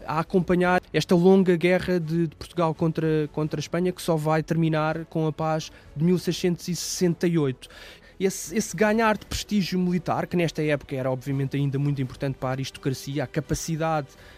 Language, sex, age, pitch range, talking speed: Portuguese, male, 20-39, 160-200 Hz, 165 wpm